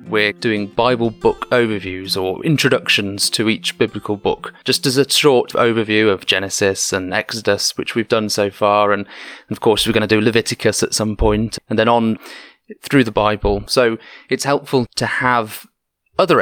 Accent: British